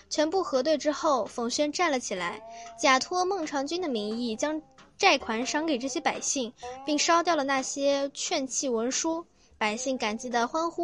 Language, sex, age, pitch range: Chinese, female, 10-29, 230-300 Hz